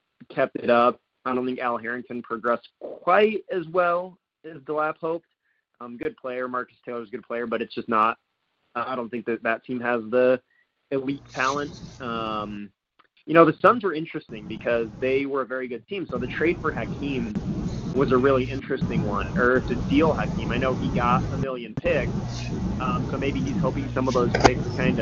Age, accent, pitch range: 30-49, American, 120-160 Hz